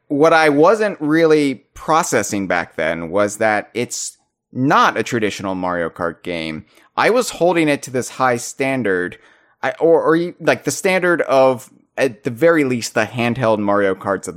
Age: 30-49